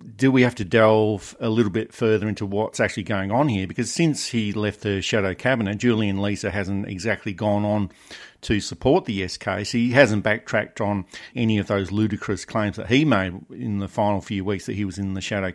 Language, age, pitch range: English, 50-69, 100-115 Hz